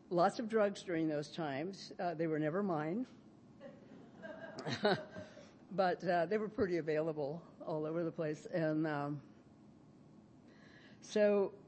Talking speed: 125 wpm